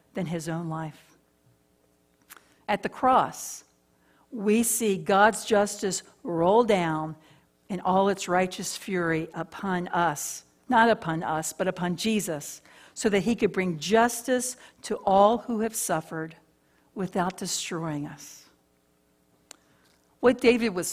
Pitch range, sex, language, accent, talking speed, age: 155-210 Hz, female, English, American, 125 wpm, 60-79